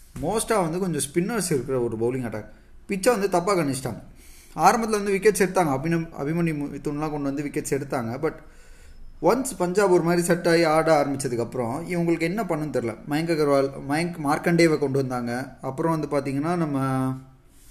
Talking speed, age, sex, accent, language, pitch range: 150 wpm, 20-39, male, native, Tamil, 135-180 Hz